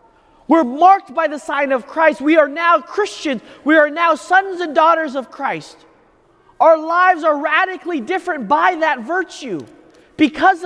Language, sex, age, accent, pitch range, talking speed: English, male, 30-49, American, 280-345 Hz, 160 wpm